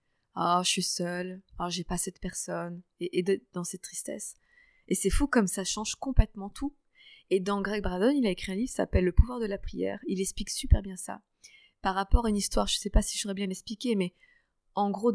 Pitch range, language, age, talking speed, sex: 180-210 Hz, French, 20-39, 255 wpm, female